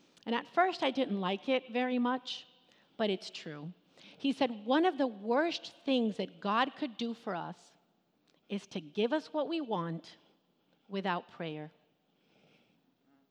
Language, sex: English, female